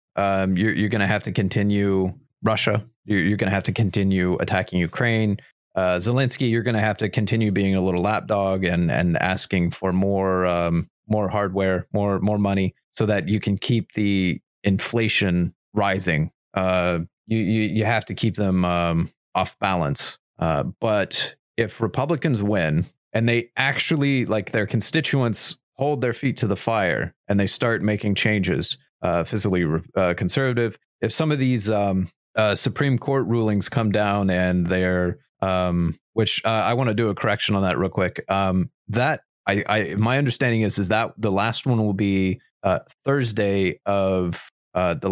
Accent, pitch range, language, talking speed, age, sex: American, 95-110 Hz, English, 175 wpm, 30-49, male